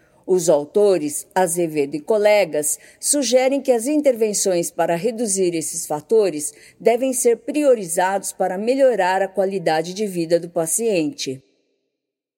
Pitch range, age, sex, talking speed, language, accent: 175-240 Hz, 50-69, female, 115 wpm, Portuguese, Brazilian